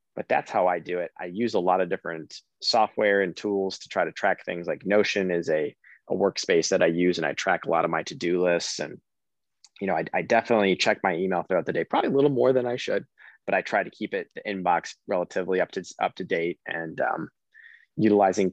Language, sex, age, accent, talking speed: English, male, 20-39, American, 240 wpm